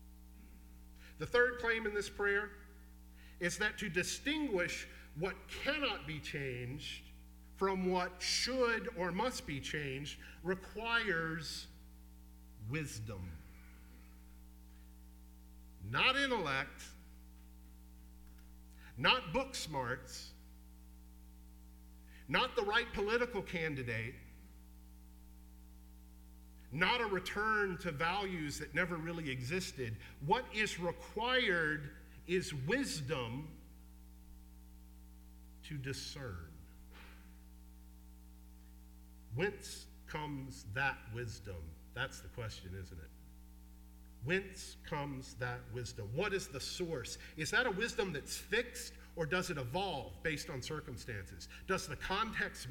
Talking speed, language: 95 wpm, English